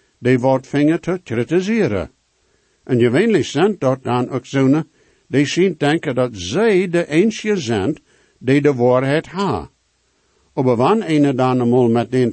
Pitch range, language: 120-160 Hz, English